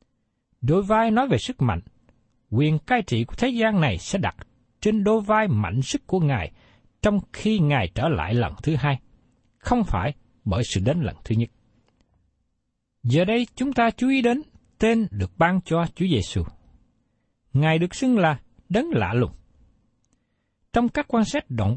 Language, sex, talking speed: Vietnamese, male, 175 wpm